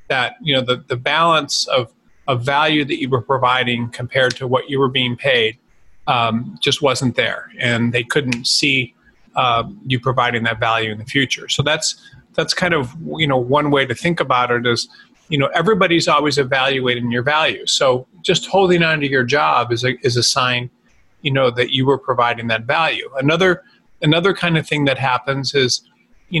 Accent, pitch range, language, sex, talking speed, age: American, 125-160 Hz, English, male, 195 wpm, 40-59